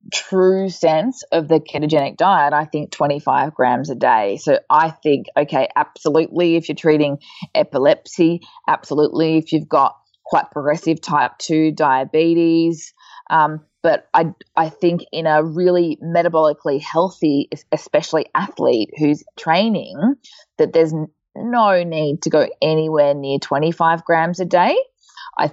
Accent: Australian